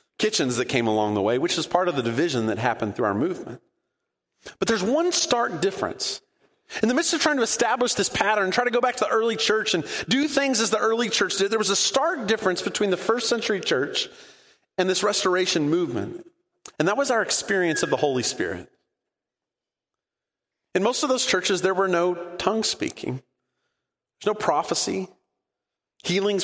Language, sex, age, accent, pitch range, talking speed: English, male, 30-49, American, 165-240 Hz, 190 wpm